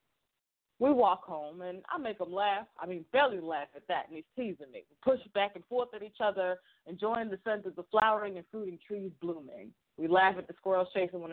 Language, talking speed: English, 230 wpm